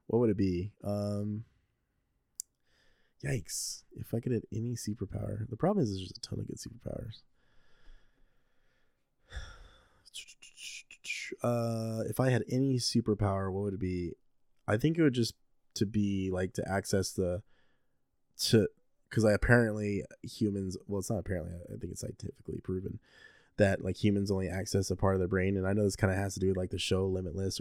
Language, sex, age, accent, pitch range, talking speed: English, male, 20-39, American, 95-110 Hz, 175 wpm